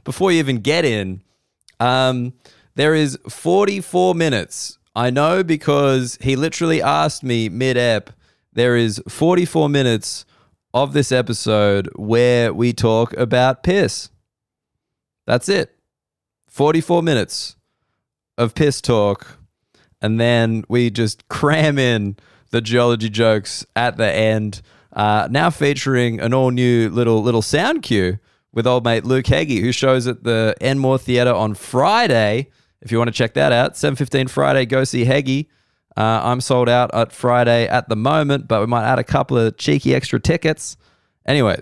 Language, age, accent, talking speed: English, 20-39, Australian, 150 wpm